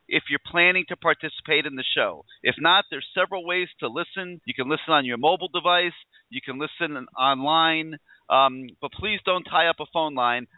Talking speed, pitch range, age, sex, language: 200 wpm, 135-180 Hz, 40-59, male, English